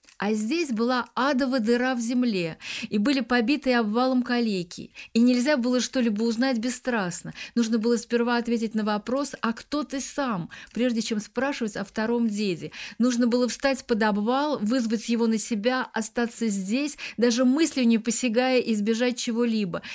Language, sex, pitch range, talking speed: Russian, female, 210-245 Hz, 155 wpm